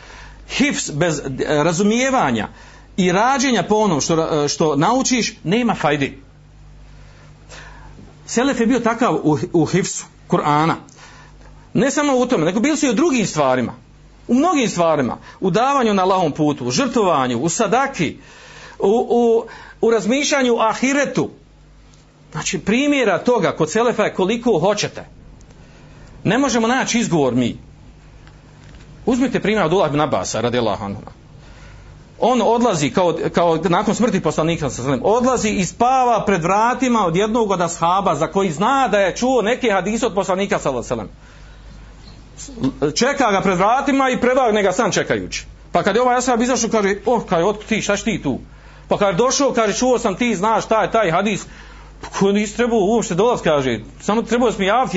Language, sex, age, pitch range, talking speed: Croatian, male, 50-69, 170-245 Hz, 155 wpm